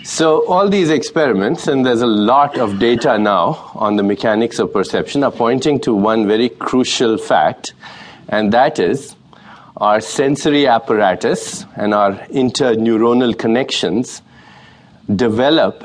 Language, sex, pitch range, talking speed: English, male, 105-130 Hz, 130 wpm